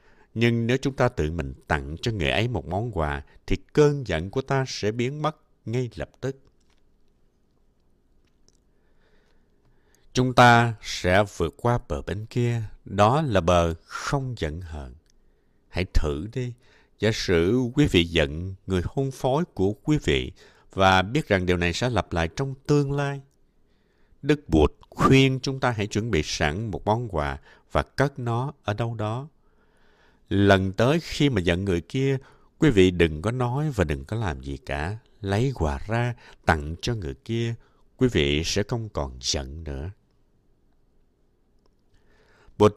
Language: Vietnamese